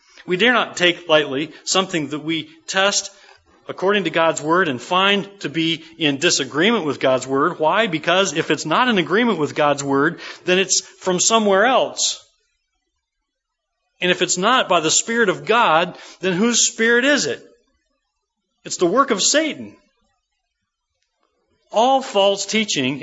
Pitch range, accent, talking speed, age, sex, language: 150-200 Hz, American, 155 wpm, 40-59, male, English